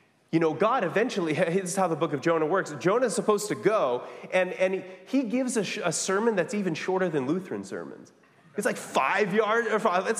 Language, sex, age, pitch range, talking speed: English, male, 30-49, 155-235 Hz, 210 wpm